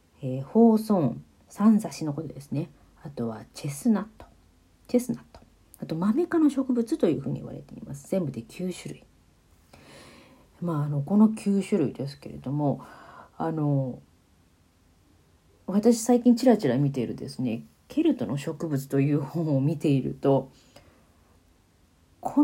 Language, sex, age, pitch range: Japanese, female, 40-59, 130-195 Hz